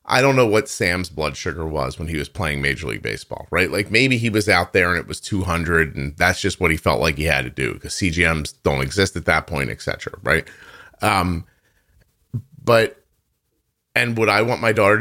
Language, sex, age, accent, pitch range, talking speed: English, male, 30-49, American, 80-105 Hz, 220 wpm